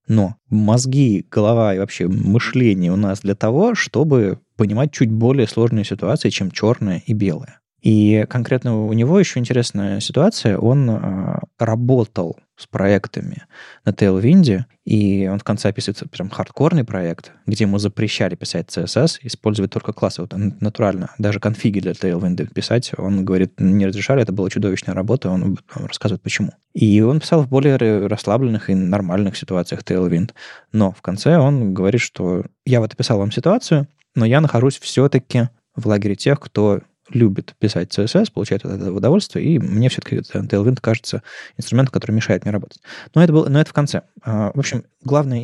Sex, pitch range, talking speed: male, 100-130 Hz, 160 wpm